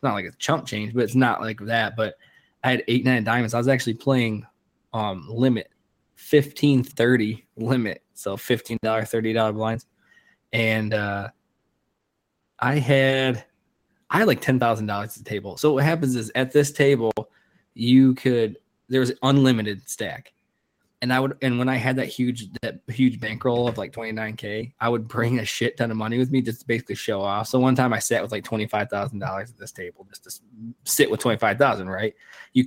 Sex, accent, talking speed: male, American, 205 wpm